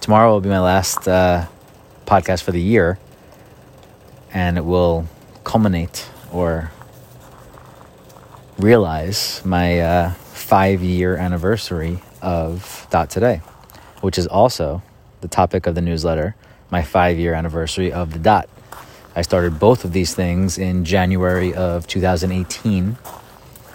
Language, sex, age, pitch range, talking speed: English, male, 30-49, 85-100 Hz, 120 wpm